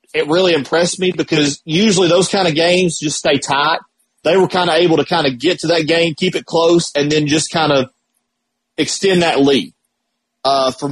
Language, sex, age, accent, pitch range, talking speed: English, male, 30-49, American, 145-180 Hz, 210 wpm